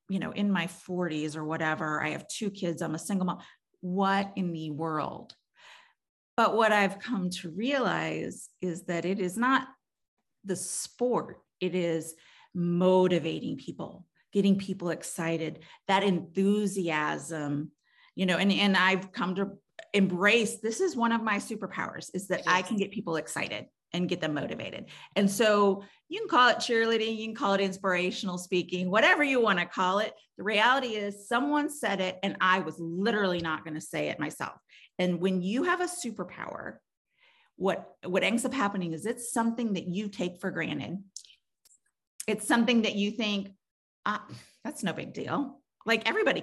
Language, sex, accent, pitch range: English, female, American, 175-220 Hz